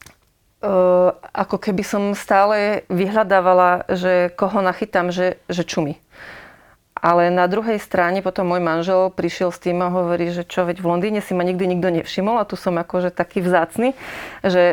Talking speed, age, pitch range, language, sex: 165 wpm, 30-49, 170-190 Hz, Slovak, female